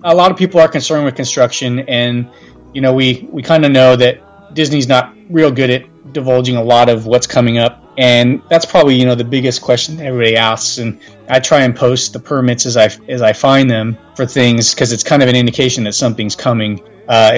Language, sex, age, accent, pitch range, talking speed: English, male, 30-49, American, 110-130 Hz, 215 wpm